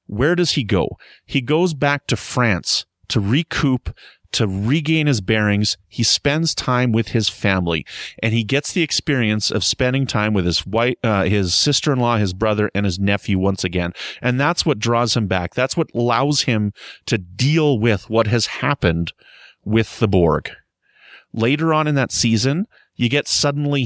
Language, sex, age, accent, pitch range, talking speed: English, male, 30-49, American, 100-130 Hz, 175 wpm